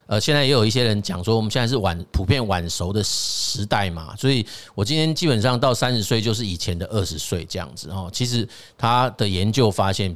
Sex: male